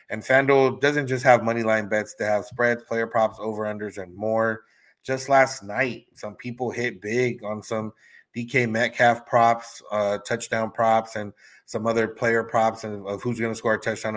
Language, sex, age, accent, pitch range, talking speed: English, male, 30-49, American, 105-130 Hz, 180 wpm